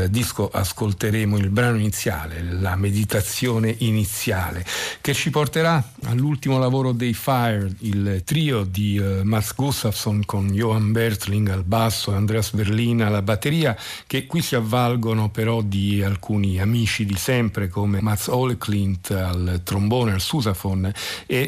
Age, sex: 50-69, male